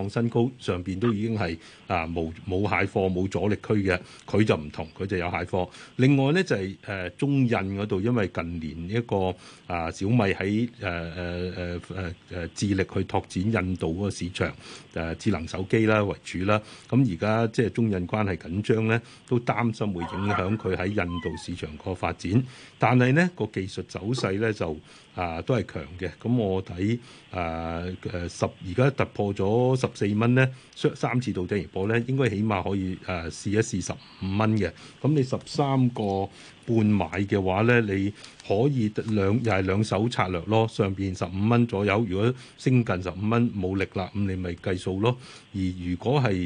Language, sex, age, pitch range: Chinese, male, 30-49, 90-120 Hz